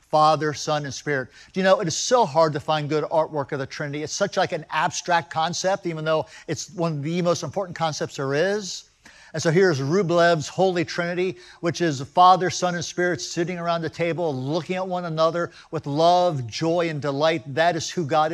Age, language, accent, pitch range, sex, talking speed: 50-69, English, American, 150-175 Hz, male, 210 wpm